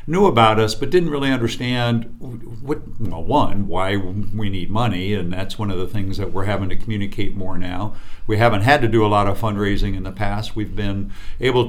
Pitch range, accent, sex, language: 100-120 Hz, American, male, English